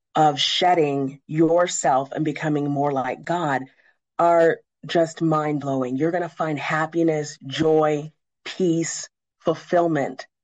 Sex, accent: female, American